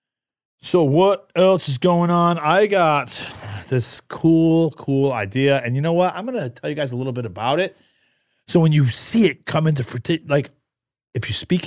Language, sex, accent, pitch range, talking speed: English, male, American, 115-160 Hz, 195 wpm